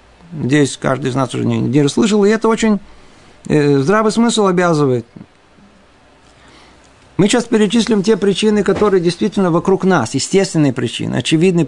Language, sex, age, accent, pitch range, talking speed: Russian, male, 50-69, native, 135-190 Hz, 140 wpm